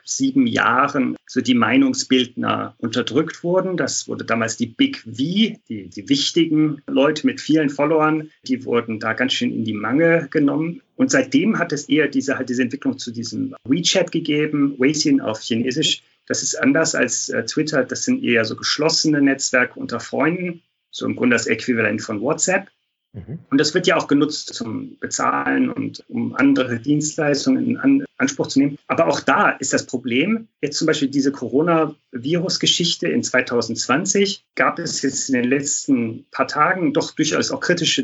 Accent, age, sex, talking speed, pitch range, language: German, 40-59, male, 165 wpm, 135-200 Hz, German